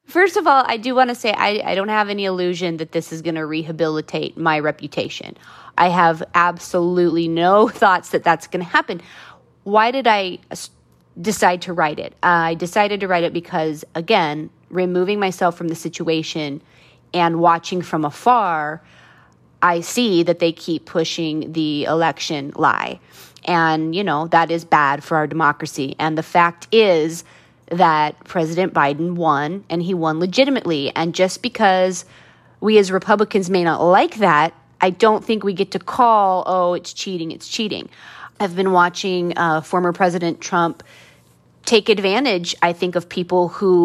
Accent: American